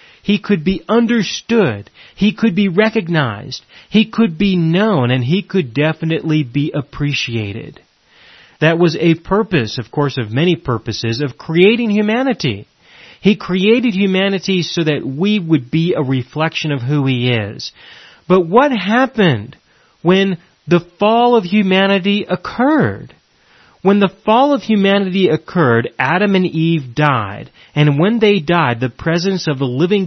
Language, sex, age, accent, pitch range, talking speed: English, male, 30-49, American, 145-195 Hz, 145 wpm